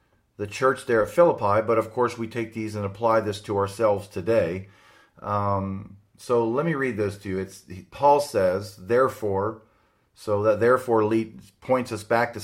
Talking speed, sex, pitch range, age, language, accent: 170 wpm, male, 100-115 Hz, 40-59, English, American